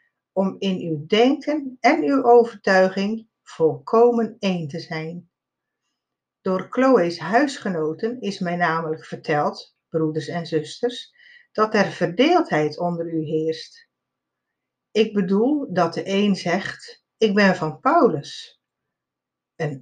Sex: female